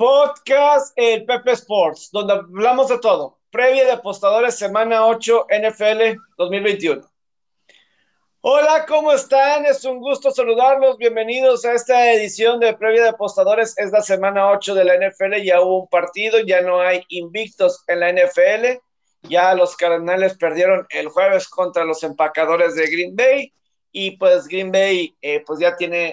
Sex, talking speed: male, 155 wpm